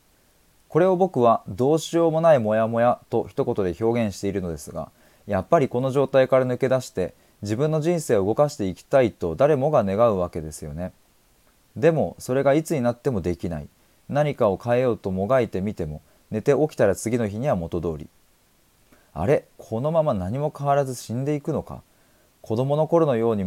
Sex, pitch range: male, 95-140 Hz